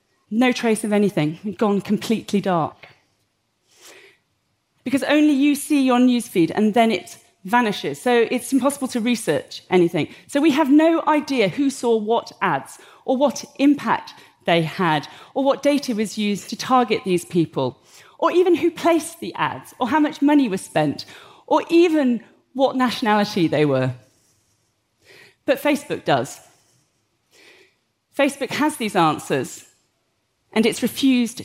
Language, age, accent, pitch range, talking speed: English, 40-59, British, 185-275 Hz, 140 wpm